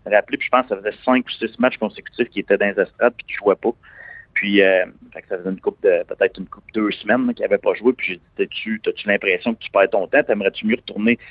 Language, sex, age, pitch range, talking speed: French, male, 30-49, 105-135 Hz, 270 wpm